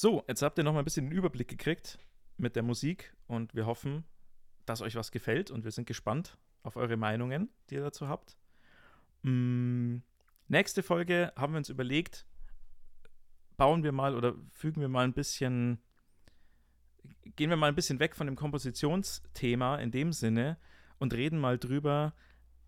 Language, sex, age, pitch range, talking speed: German, male, 40-59, 115-145 Hz, 165 wpm